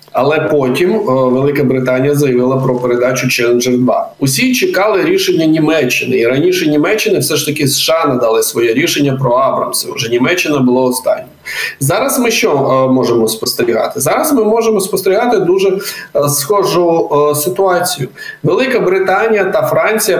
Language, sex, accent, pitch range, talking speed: Ukrainian, male, native, 130-190 Hz, 145 wpm